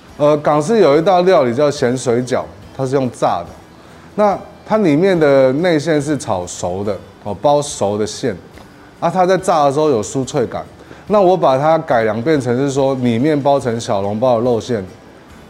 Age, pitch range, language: 20-39, 110-150 Hz, Chinese